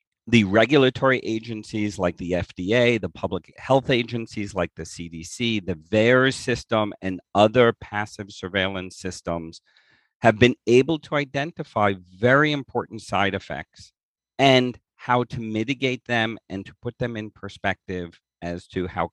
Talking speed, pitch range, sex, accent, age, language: 140 wpm, 95-125 Hz, male, American, 50-69, English